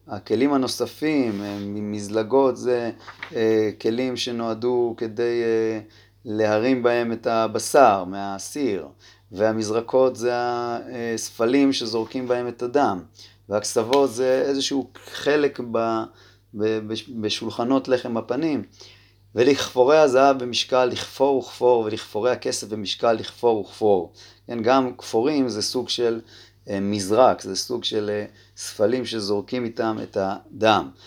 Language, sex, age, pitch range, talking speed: Hebrew, male, 30-49, 100-125 Hz, 110 wpm